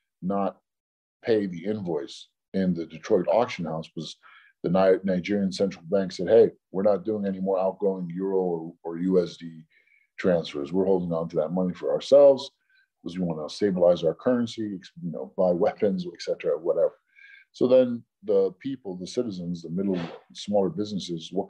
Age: 50-69